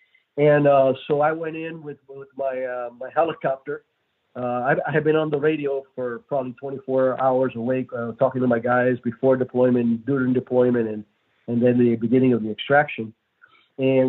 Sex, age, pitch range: male, 50-69, 125-145 Hz